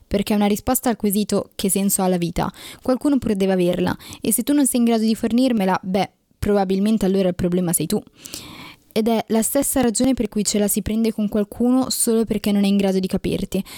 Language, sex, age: Italian, female, 10-29